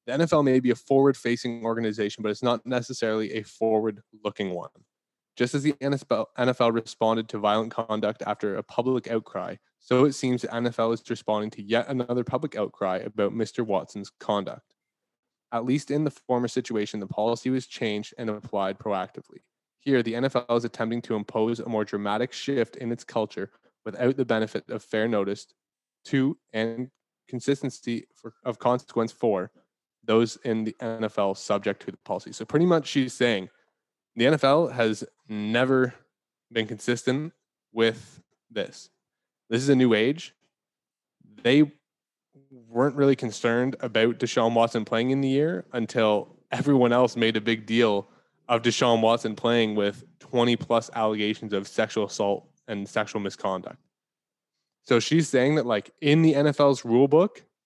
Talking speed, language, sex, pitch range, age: 155 wpm, English, male, 110-130 Hz, 20-39